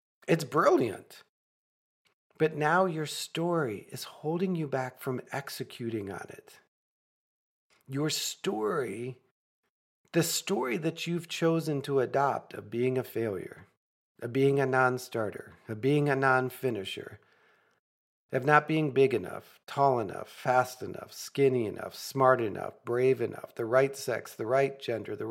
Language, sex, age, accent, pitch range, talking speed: English, male, 50-69, American, 125-165 Hz, 135 wpm